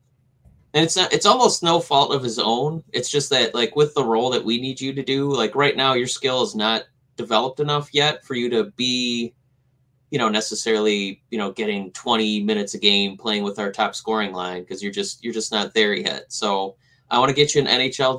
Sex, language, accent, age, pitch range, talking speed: male, English, American, 20-39, 115-130 Hz, 230 wpm